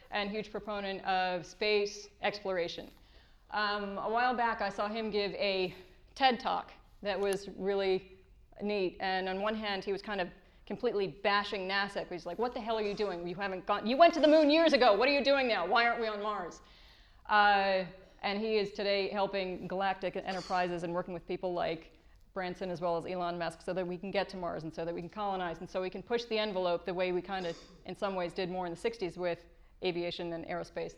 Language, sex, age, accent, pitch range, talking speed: English, female, 30-49, American, 185-230 Hz, 225 wpm